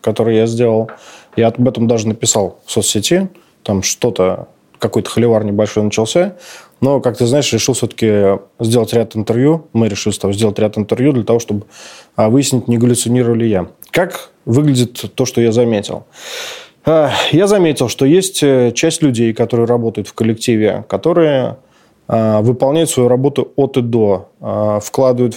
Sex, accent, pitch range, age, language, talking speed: male, native, 110-135 Hz, 20-39, Russian, 145 wpm